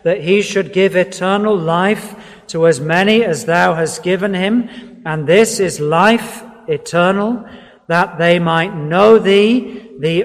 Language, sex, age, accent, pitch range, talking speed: English, male, 50-69, British, 170-220 Hz, 145 wpm